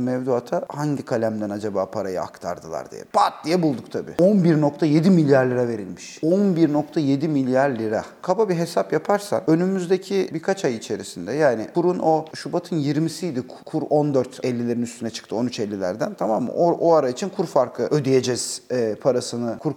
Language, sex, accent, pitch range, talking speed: Turkish, male, native, 125-180 Hz, 145 wpm